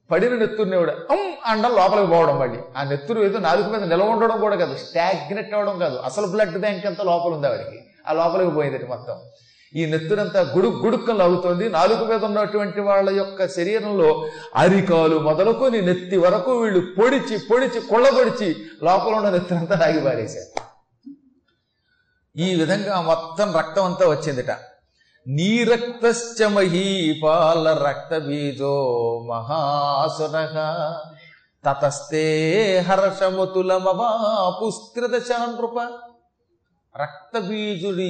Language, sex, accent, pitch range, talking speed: Telugu, male, native, 155-225 Hz, 90 wpm